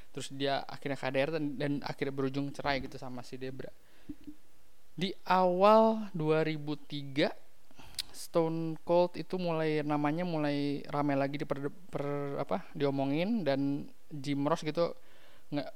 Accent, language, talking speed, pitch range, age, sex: native, Indonesian, 120 wpm, 135-155 Hz, 20-39, male